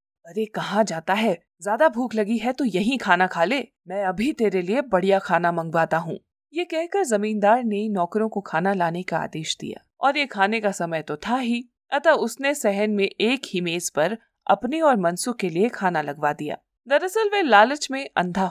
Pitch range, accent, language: 175-245 Hz, native, Hindi